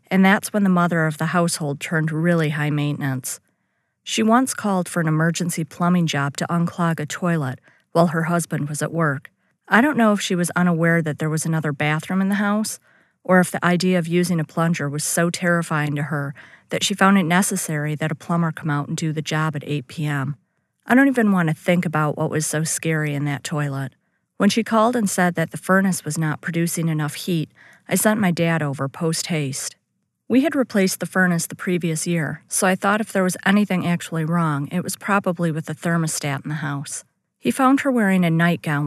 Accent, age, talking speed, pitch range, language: American, 40-59, 215 wpm, 155-185 Hz, English